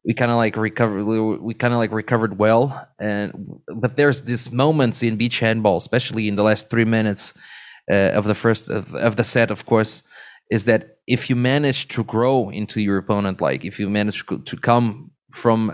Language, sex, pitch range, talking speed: English, male, 105-120 Hz, 200 wpm